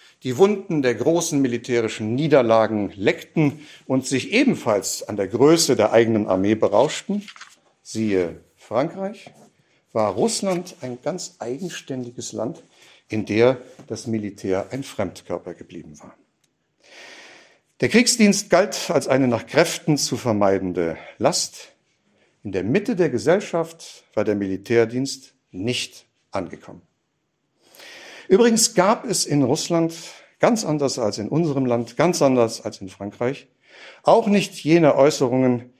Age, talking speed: 60-79, 120 wpm